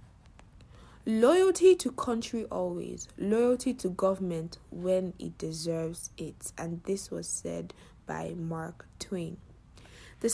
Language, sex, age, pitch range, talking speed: English, female, 60-79, 170-220 Hz, 110 wpm